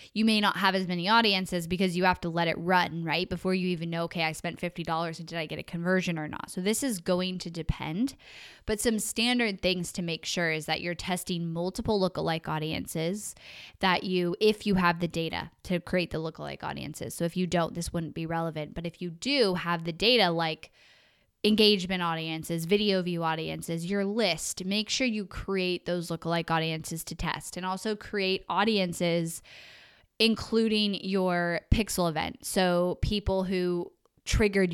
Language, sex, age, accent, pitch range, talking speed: English, female, 10-29, American, 170-195 Hz, 185 wpm